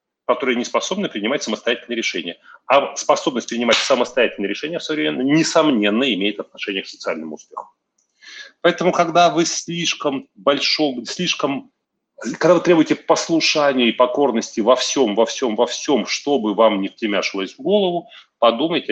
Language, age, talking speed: Russian, 30-49, 145 wpm